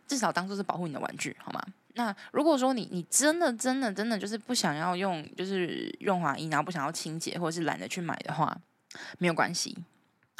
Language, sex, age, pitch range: Chinese, female, 10-29, 155-200 Hz